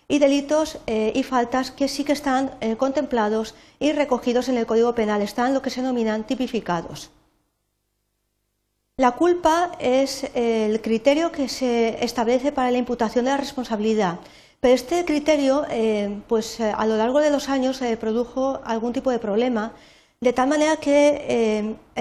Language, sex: Spanish, female